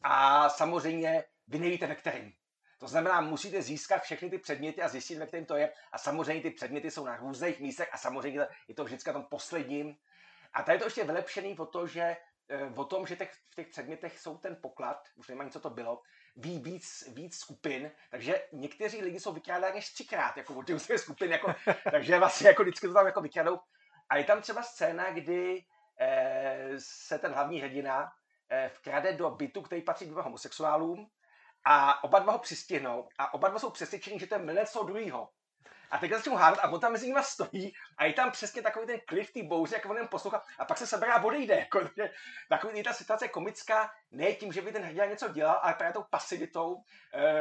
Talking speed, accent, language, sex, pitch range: 205 wpm, native, Czech, male, 155-215 Hz